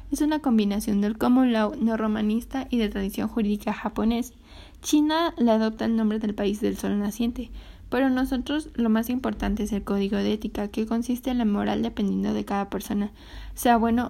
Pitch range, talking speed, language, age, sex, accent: 210-240 Hz, 185 wpm, Spanish, 20-39, female, Mexican